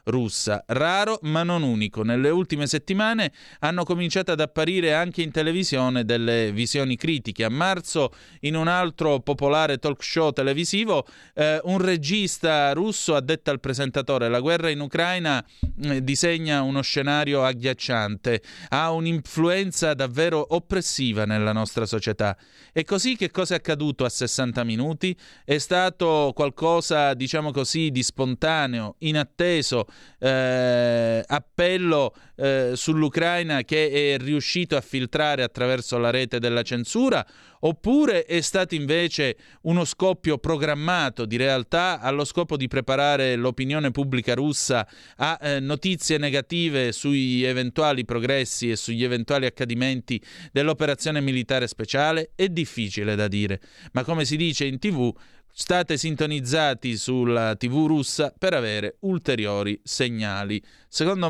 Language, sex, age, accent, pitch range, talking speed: Italian, male, 30-49, native, 125-160 Hz, 130 wpm